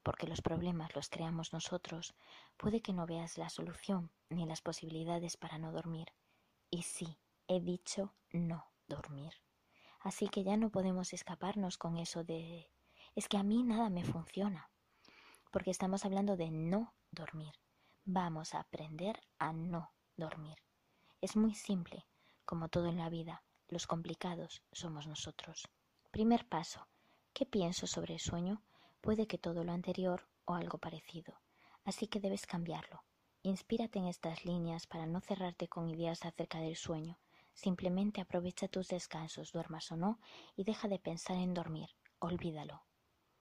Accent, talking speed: Spanish, 150 wpm